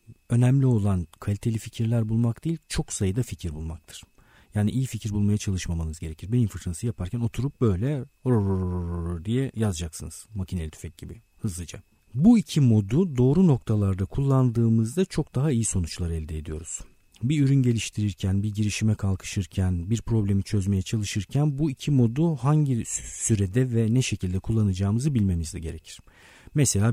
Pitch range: 95-125 Hz